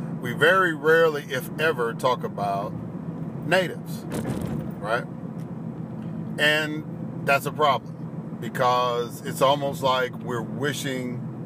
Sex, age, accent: male, 50-69, American